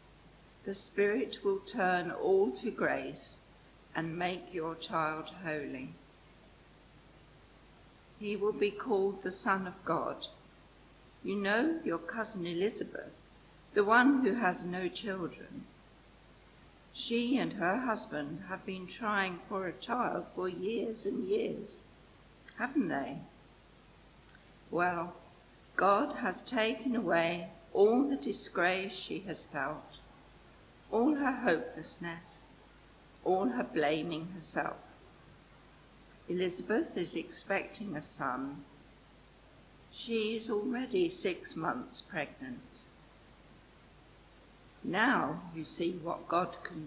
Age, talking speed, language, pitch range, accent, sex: 60-79, 105 wpm, English, 170-235 Hz, British, female